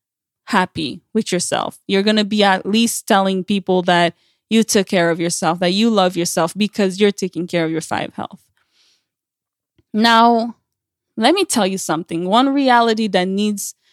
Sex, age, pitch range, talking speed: female, 20-39, 190-230 Hz, 170 wpm